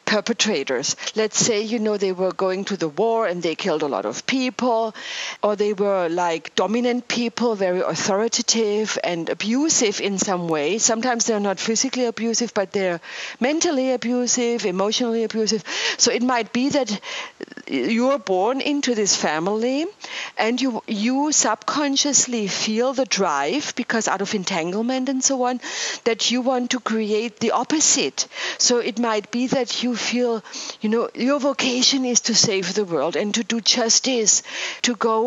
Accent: German